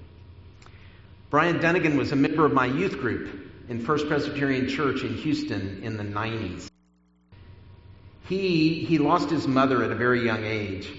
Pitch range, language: 95-135 Hz, English